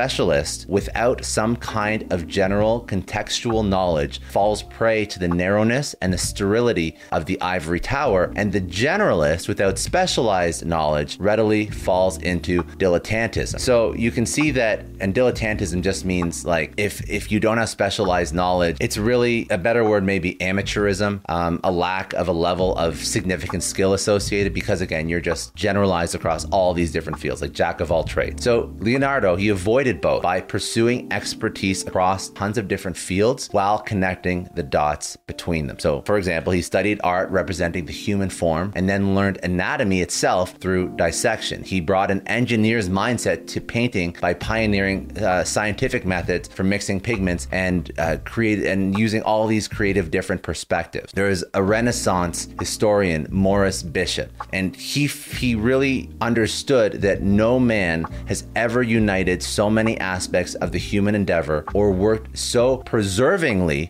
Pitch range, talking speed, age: 90-110 Hz, 160 wpm, 30-49